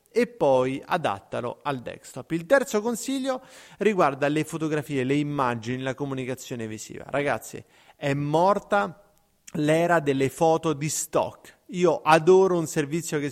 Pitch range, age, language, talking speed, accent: 145-195 Hz, 30-49, Italian, 130 wpm, native